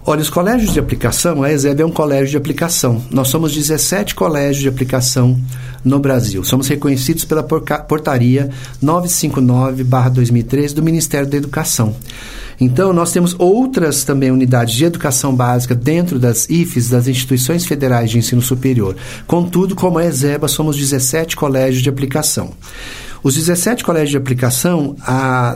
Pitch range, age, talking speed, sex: 125-155 Hz, 50-69, 145 wpm, male